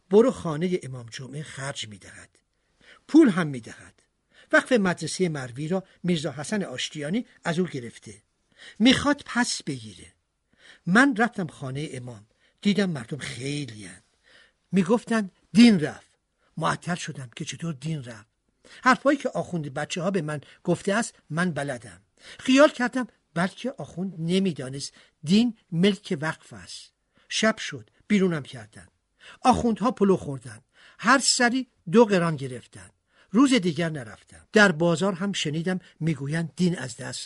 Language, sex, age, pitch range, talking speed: Persian, male, 60-79, 140-220 Hz, 135 wpm